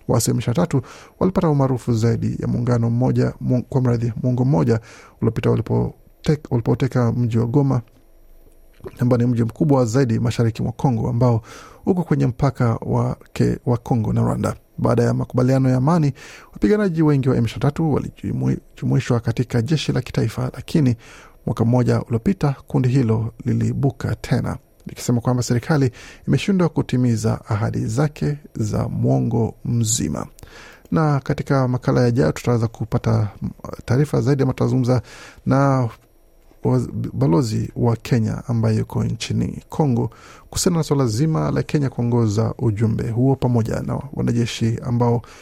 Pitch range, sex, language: 115-135 Hz, male, Swahili